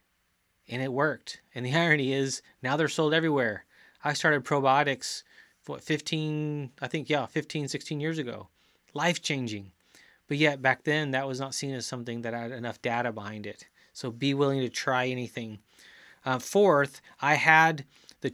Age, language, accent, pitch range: 30-49, English, American, 120-150 Hz